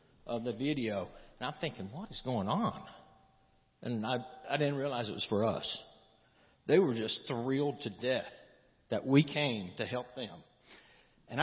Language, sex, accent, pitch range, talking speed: English, male, American, 125-150 Hz, 170 wpm